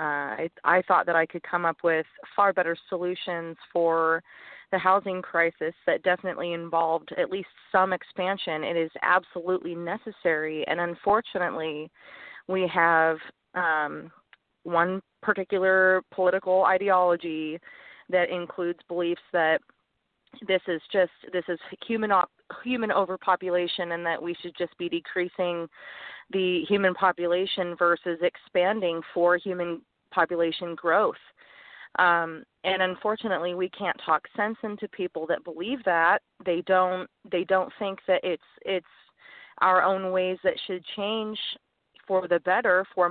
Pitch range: 170-190 Hz